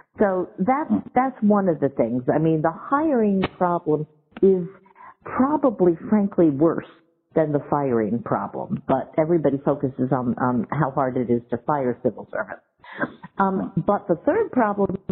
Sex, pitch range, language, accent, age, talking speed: female, 145-190 Hz, English, American, 50-69, 150 wpm